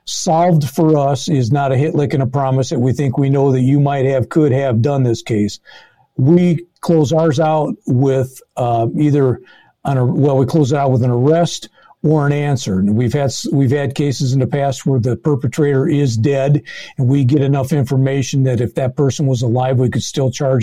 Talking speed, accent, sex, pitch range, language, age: 215 wpm, American, male, 125-150 Hz, English, 50-69